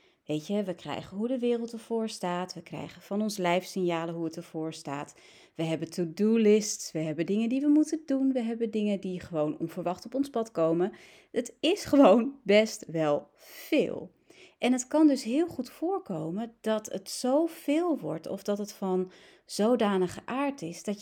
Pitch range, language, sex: 175-260 Hz, Dutch, female